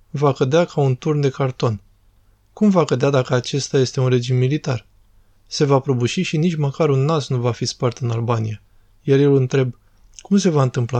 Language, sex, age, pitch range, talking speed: Romanian, male, 20-39, 120-145 Hz, 200 wpm